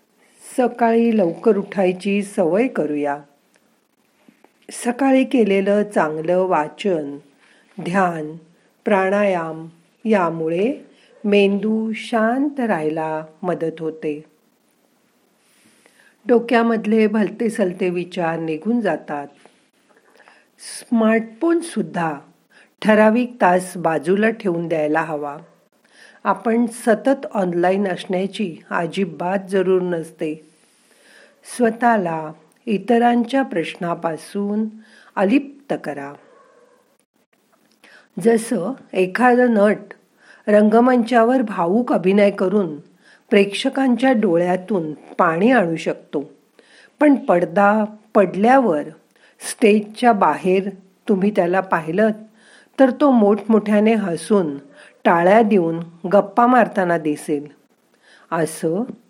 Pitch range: 170-230 Hz